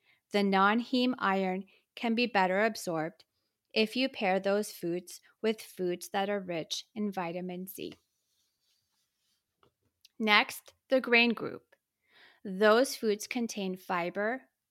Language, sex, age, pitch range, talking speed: English, female, 30-49, 185-225 Hz, 115 wpm